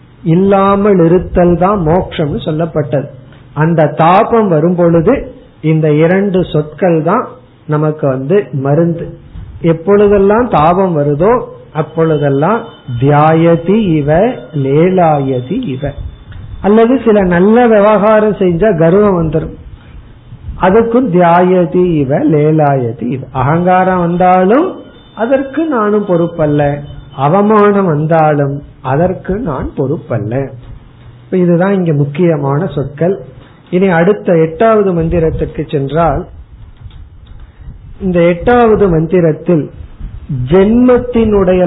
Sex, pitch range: male, 145-195 Hz